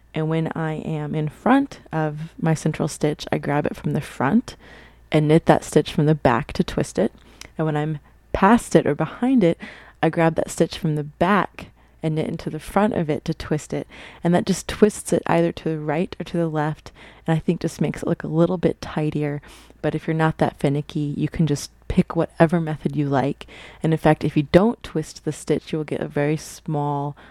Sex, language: female, English